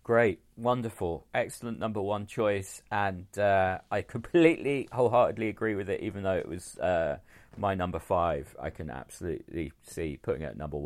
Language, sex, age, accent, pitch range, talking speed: English, male, 40-59, British, 85-110 Hz, 165 wpm